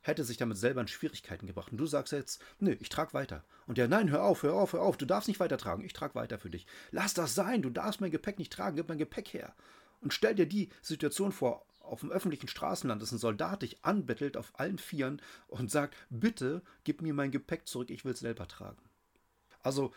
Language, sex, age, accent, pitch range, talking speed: German, male, 40-59, German, 110-150 Hz, 235 wpm